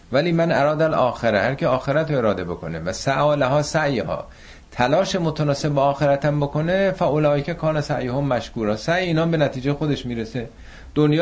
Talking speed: 160 wpm